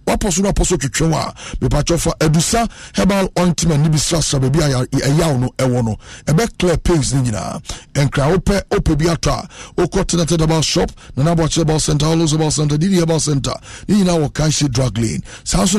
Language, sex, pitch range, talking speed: English, male, 140-180 Hz, 175 wpm